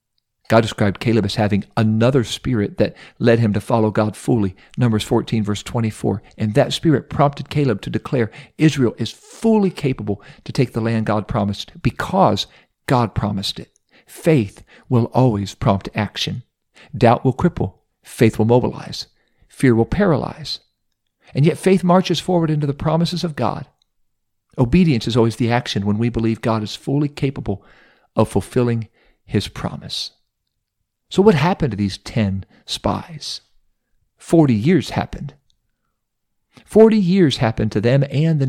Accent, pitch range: American, 105-135 Hz